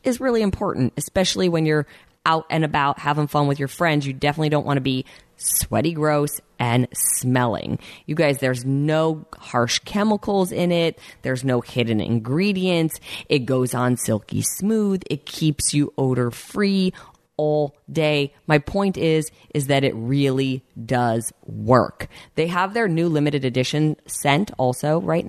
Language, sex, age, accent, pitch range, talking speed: English, female, 20-39, American, 130-185 Hz, 155 wpm